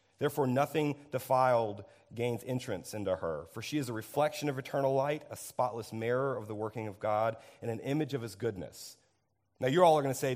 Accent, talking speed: American, 210 wpm